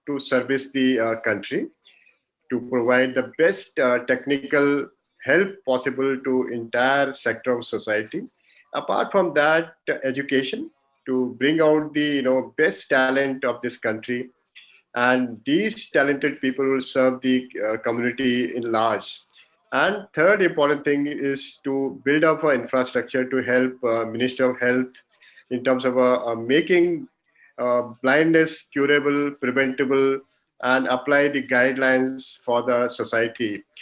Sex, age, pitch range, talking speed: male, 50-69, 125-140 Hz, 140 wpm